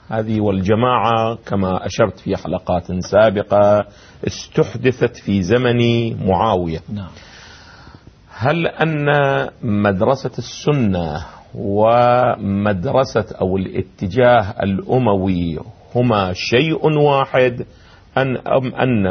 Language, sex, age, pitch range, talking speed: Arabic, male, 40-59, 100-130 Hz, 75 wpm